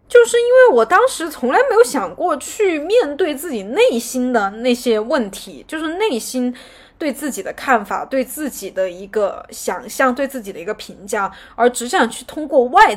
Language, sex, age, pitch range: Chinese, female, 20-39, 200-285 Hz